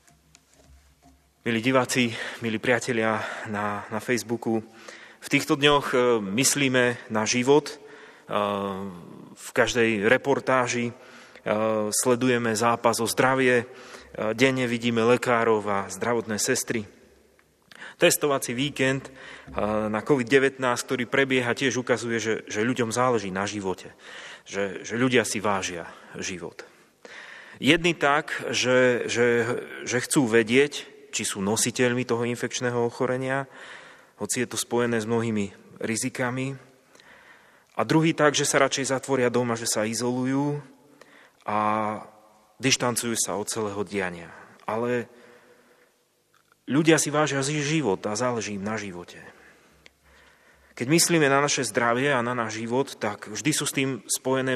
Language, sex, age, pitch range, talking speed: Slovak, male, 30-49, 110-130 Hz, 120 wpm